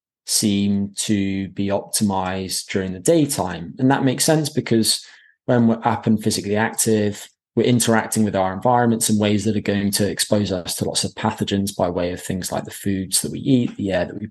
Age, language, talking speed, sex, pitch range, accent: 20-39, English, 205 wpm, male, 100-120 Hz, British